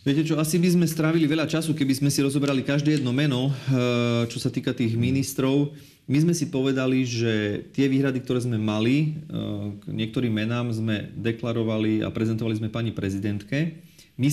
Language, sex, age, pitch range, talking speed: Slovak, male, 30-49, 110-135 Hz, 170 wpm